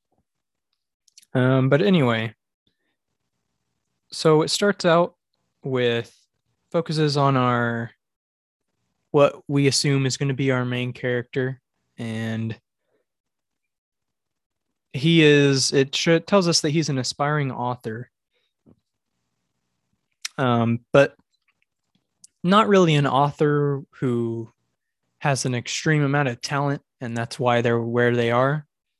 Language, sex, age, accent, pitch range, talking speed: English, male, 20-39, American, 115-145 Hz, 110 wpm